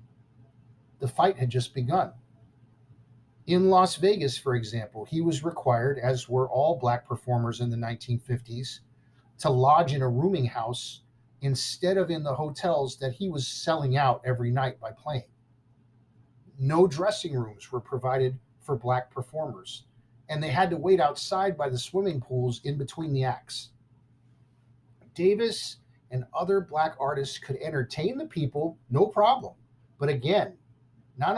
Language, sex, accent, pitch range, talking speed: English, male, American, 120-150 Hz, 145 wpm